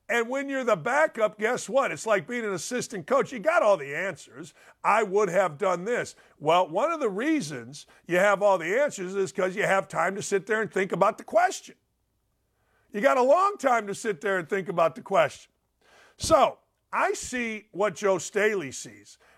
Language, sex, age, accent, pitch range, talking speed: English, male, 50-69, American, 175-240 Hz, 205 wpm